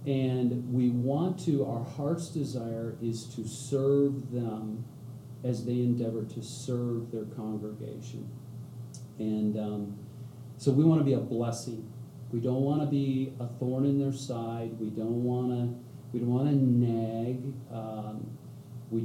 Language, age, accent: English, 40-59, American